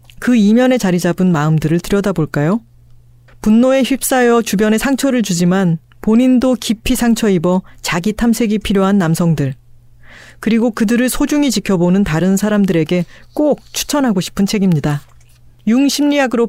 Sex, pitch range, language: female, 170-235 Hz, Korean